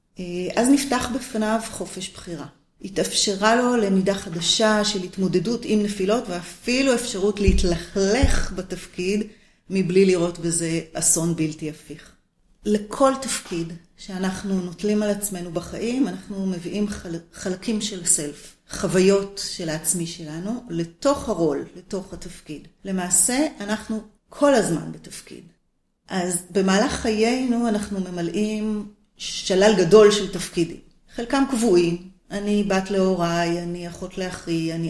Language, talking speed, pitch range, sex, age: Hebrew, 115 wpm, 175-215 Hz, female, 30-49